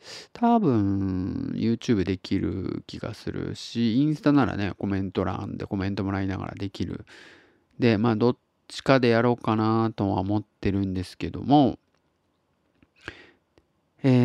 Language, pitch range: Japanese, 105-135 Hz